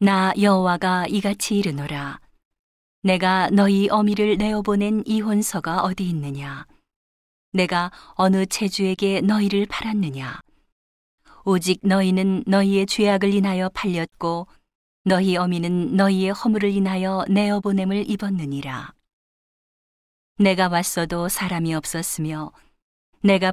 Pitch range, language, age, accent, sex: 170-200 Hz, Korean, 40-59, native, female